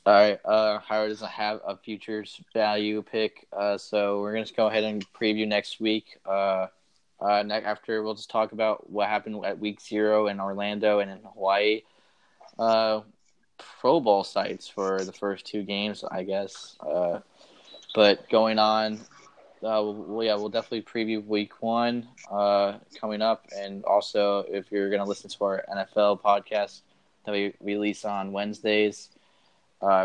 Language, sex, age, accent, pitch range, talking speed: English, male, 20-39, American, 100-110 Hz, 165 wpm